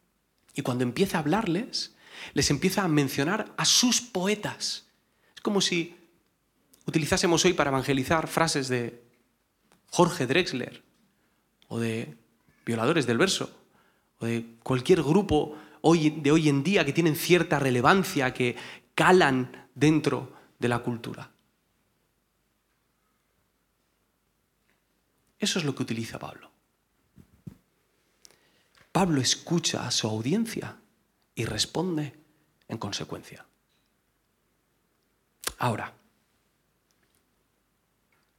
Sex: male